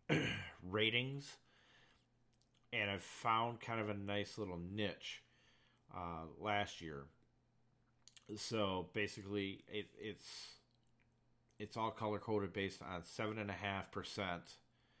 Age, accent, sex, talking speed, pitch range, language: 40-59, American, male, 110 wpm, 90-115 Hz, English